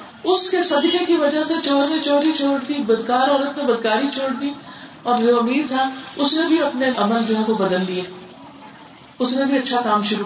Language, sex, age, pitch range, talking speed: Urdu, female, 50-69, 210-290 Hz, 210 wpm